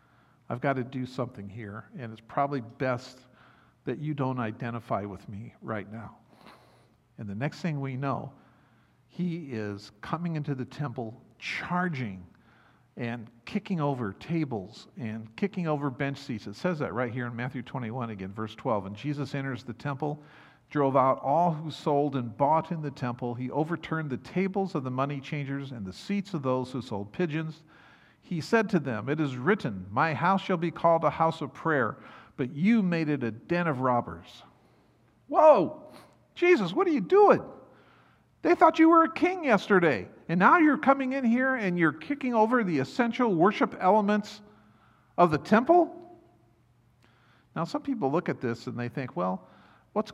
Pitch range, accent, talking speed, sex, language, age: 120-175 Hz, American, 175 wpm, male, English, 50-69